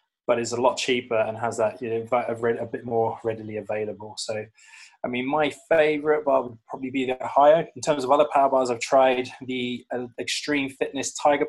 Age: 20-39